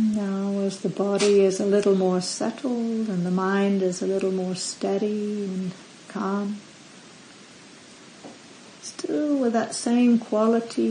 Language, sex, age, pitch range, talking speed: English, female, 60-79, 195-225 Hz, 130 wpm